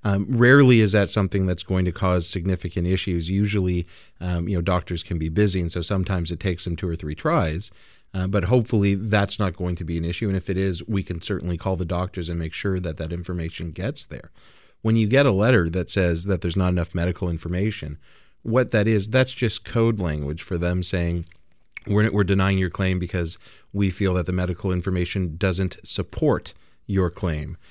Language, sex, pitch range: English, male, 85-105 Hz